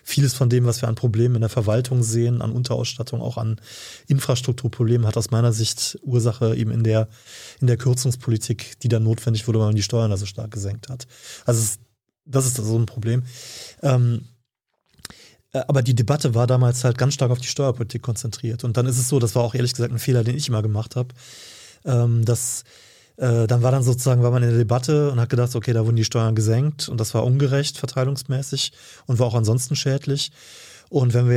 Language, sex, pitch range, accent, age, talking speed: German, male, 115-130 Hz, German, 20-39, 205 wpm